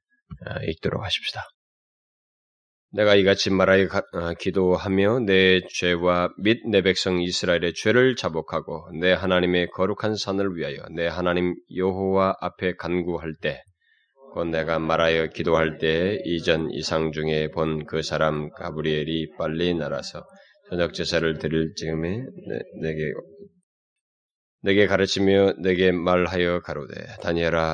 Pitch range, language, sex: 80-95 Hz, Korean, male